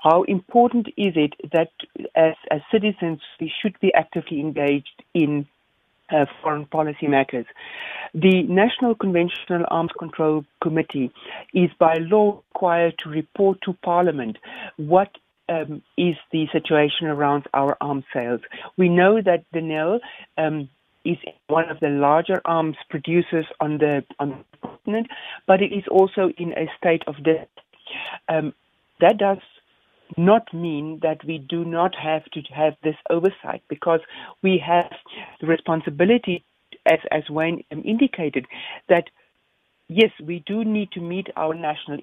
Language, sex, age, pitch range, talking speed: English, female, 60-79, 155-185 Hz, 140 wpm